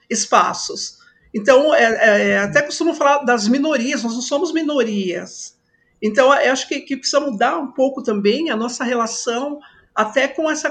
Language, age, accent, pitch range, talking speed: Portuguese, 50-69, Brazilian, 210-295 Hz, 165 wpm